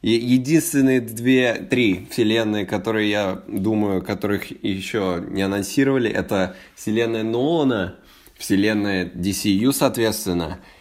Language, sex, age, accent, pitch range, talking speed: Russian, male, 20-39, native, 95-115 Hz, 95 wpm